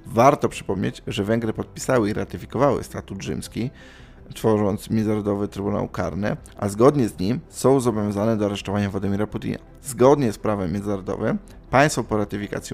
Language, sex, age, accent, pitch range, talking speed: Polish, male, 20-39, native, 100-120 Hz, 140 wpm